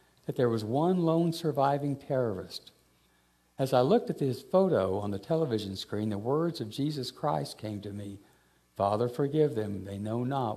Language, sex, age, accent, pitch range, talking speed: English, male, 60-79, American, 100-135 Hz, 170 wpm